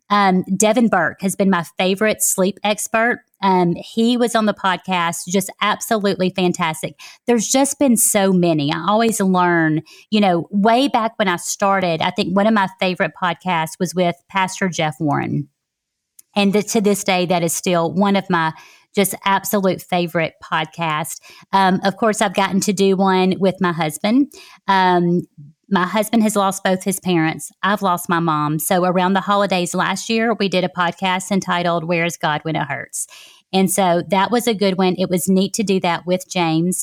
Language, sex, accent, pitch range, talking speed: English, female, American, 175-205 Hz, 185 wpm